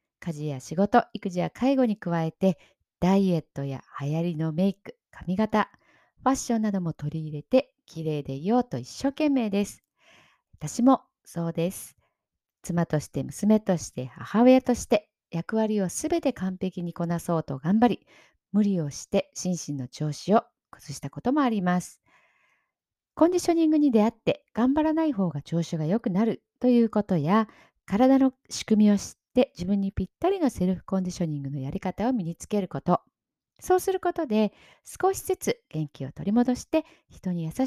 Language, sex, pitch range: Japanese, female, 160-250 Hz